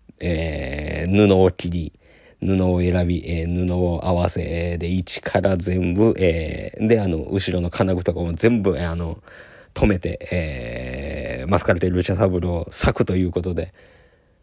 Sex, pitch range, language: male, 90-105 Hz, Japanese